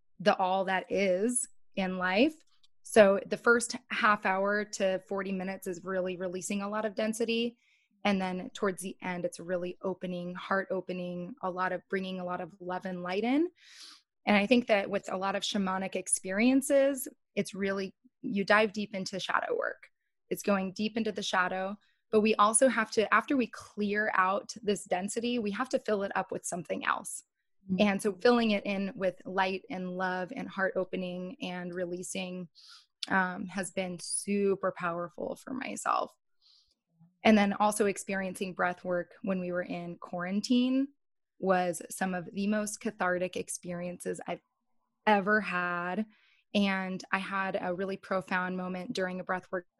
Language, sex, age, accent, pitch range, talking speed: English, female, 20-39, American, 185-215 Hz, 165 wpm